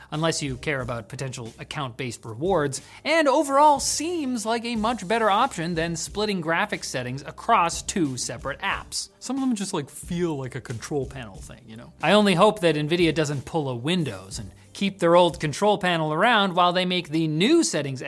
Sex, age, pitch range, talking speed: male, 30-49, 140-210 Hz, 195 wpm